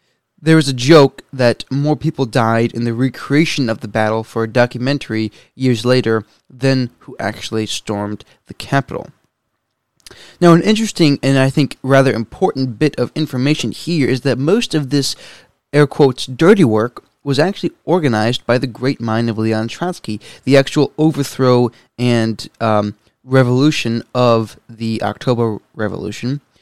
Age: 20-39